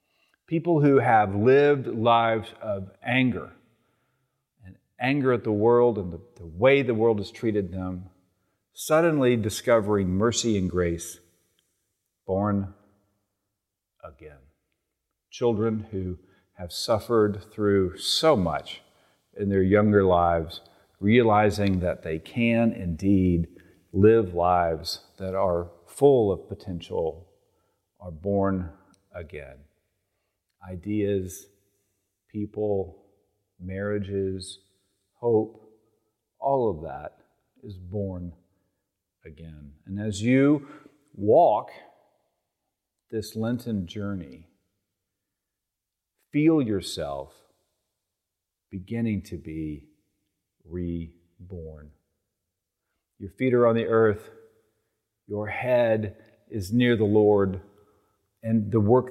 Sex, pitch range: male, 90-110 Hz